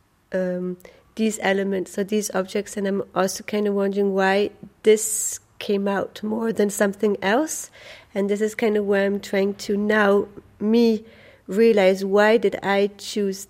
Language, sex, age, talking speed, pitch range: German, female, 30-49, 160 wpm, 185-215 Hz